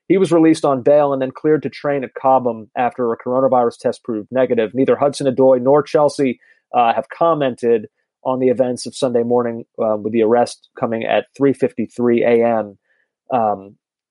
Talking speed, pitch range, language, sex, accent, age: 175 wpm, 120-155 Hz, English, male, American, 30-49